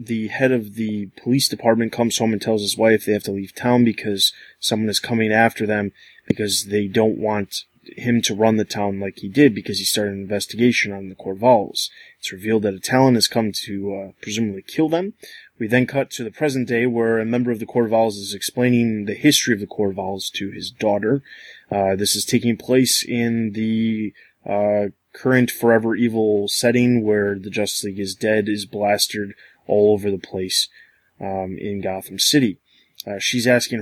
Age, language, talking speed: 20-39, English, 195 wpm